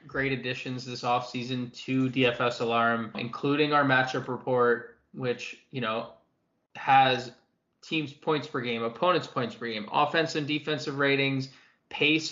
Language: English